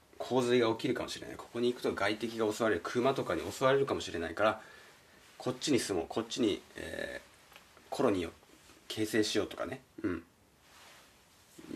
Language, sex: Japanese, male